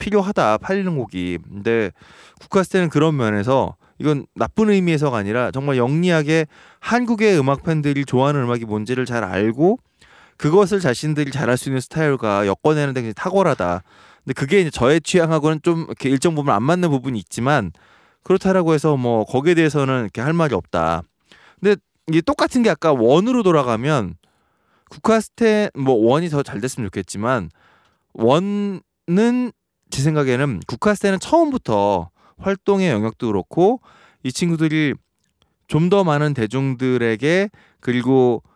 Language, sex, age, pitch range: Korean, male, 20-39, 120-180 Hz